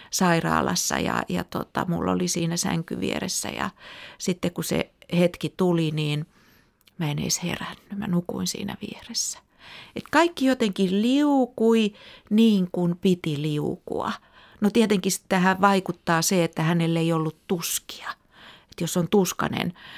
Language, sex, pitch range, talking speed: Finnish, female, 160-200 Hz, 140 wpm